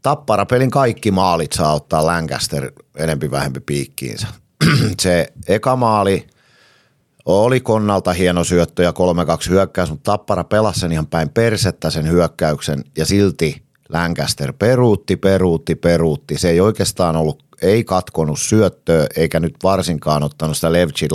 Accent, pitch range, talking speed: native, 75-95 Hz, 135 wpm